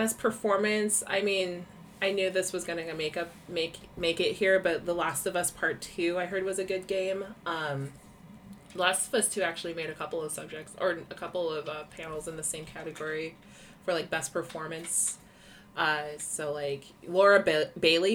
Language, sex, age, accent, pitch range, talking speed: English, female, 20-39, American, 155-200 Hz, 190 wpm